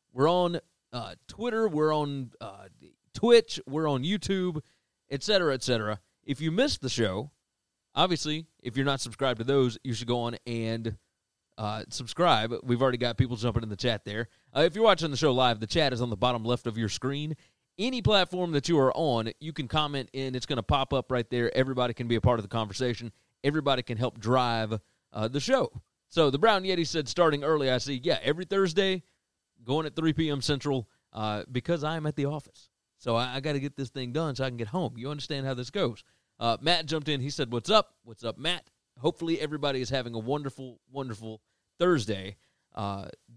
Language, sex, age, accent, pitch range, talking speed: English, male, 30-49, American, 120-160 Hz, 210 wpm